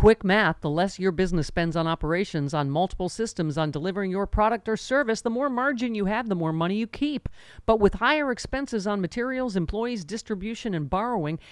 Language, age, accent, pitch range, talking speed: English, 50-69, American, 165-235 Hz, 200 wpm